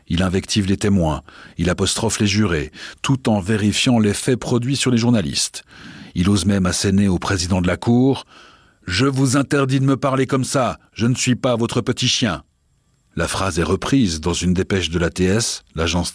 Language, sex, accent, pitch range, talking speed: French, male, French, 85-110 Hz, 185 wpm